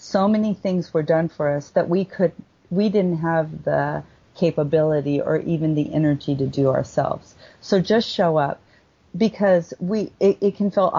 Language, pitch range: English, 145-180 Hz